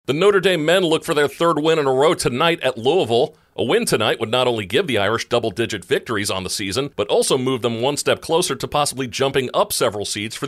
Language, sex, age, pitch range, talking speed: English, male, 40-59, 110-135 Hz, 245 wpm